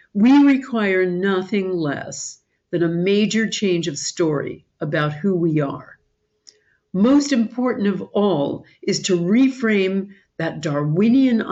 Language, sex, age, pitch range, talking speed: English, female, 60-79, 165-230 Hz, 120 wpm